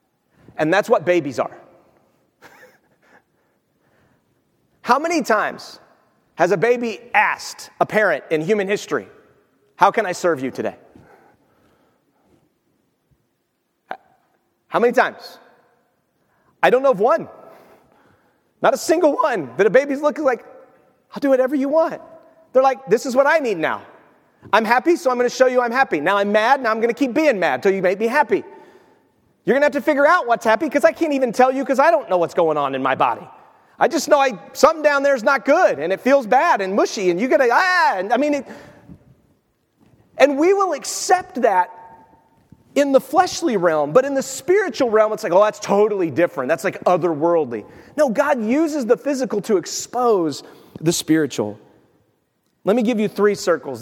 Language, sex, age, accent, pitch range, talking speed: English, male, 30-49, American, 190-295 Hz, 185 wpm